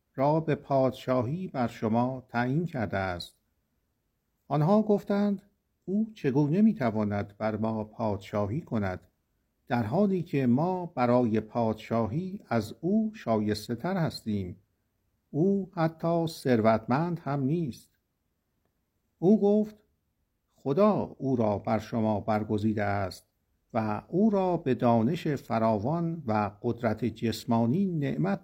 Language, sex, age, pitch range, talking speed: Persian, male, 50-69, 110-165 Hz, 110 wpm